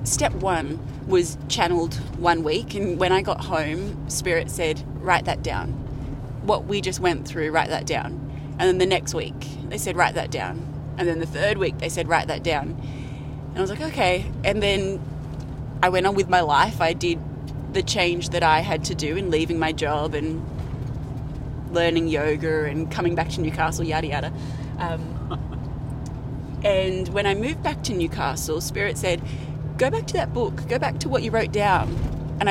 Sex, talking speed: female, 190 wpm